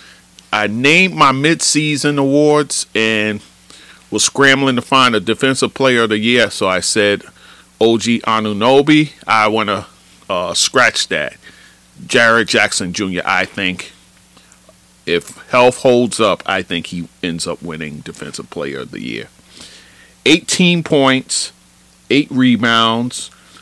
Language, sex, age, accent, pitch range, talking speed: English, male, 40-59, American, 90-140 Hz, 125 wpm